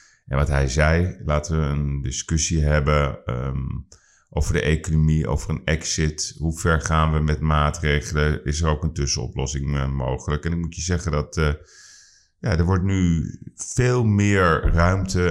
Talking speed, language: 155 wpm, Dutch